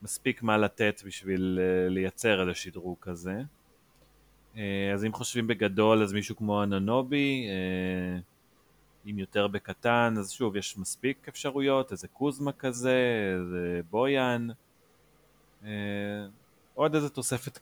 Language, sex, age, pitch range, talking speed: Hebrew, male, 30-49, 100-135 Hz, 110 wpm